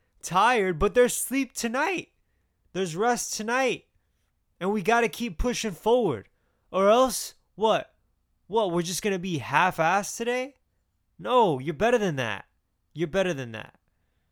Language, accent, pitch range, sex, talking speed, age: English, American, 100-155 Hz, male, 145 wpm, 20-39